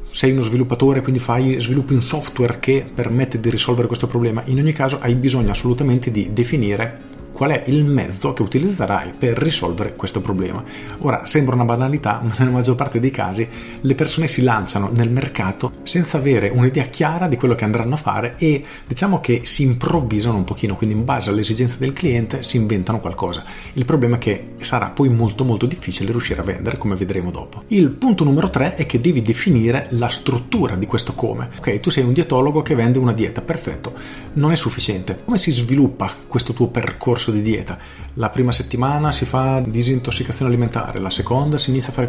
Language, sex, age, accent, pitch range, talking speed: Italian, male, 40-59, native, 110-135 Hz, 190 wpm